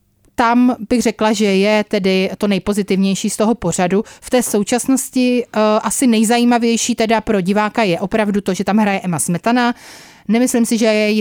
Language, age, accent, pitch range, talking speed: Czech, 30-49, native, 195-235 Hz, 170 wpm